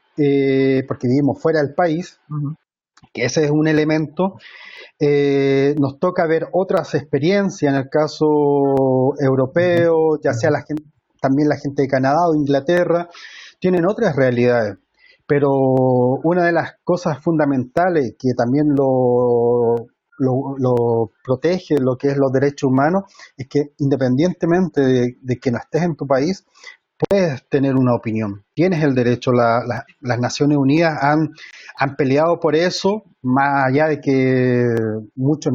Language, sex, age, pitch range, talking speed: Spanish, male, 30-49, 130-165 Hz, 145 wpm